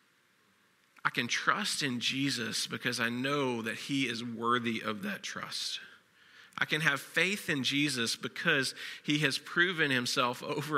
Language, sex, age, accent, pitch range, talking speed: English, male, 40-59, American, 120-155 Hz, 150 wpm